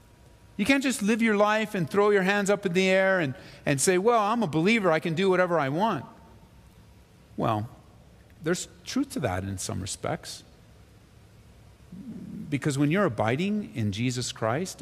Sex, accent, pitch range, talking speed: male, American, 110-150 Hz, 170 wpm